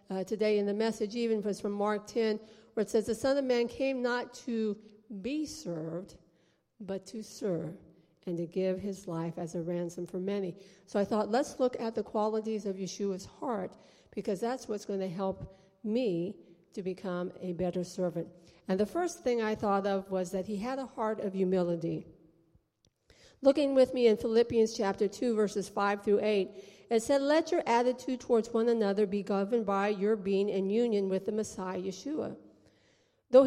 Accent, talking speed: American, 185 wpm